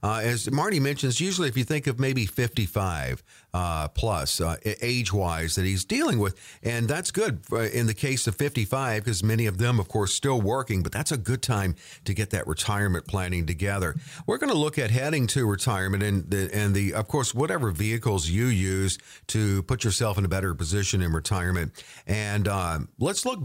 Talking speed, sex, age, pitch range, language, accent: 195 wpm, male, 50-69, 95-130 Hz, English, American